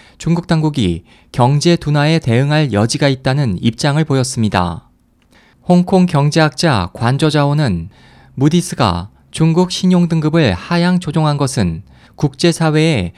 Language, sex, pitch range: Korean, male, 125-170 Hz